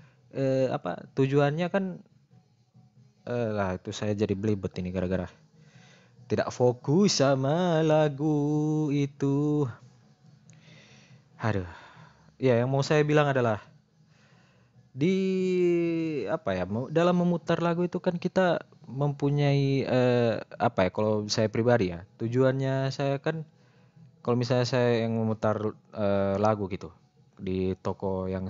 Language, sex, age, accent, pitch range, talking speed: Indonesian, male, 20-39, native, 100-145 Hz, 120 wpm